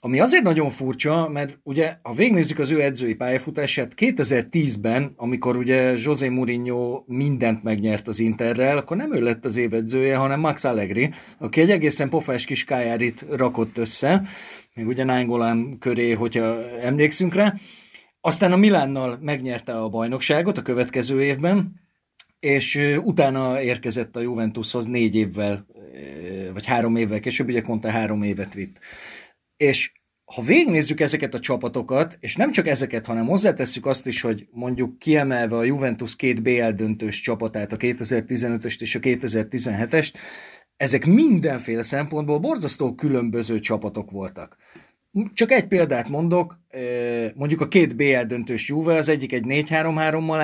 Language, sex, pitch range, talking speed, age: Hungarian, male, 115-155 Hz, 135 wpm, 30-49